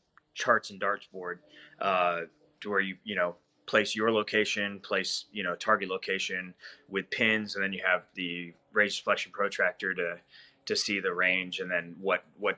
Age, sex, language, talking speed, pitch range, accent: 20-39, male, English, 175 wpm, 90-105 Hz, American